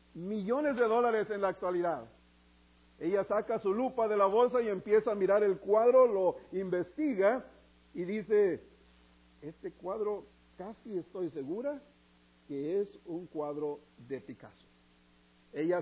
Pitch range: 150-220 Hz